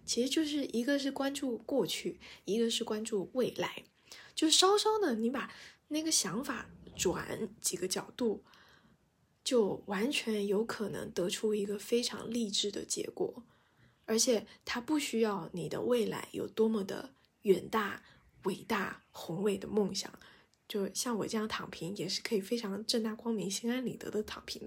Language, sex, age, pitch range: Chinese, female, 20-39, 200-250 Hz